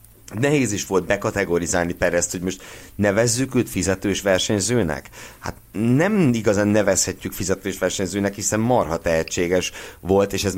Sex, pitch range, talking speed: male, 85-110 Hz, 130 wpm